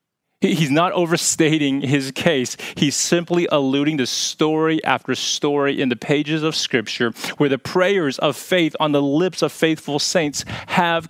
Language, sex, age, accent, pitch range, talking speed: English, male, 30-49, American, 125-165 Hz, 155 wpm